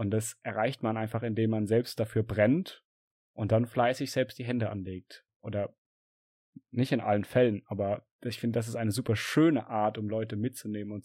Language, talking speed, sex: German, 190 wpm, male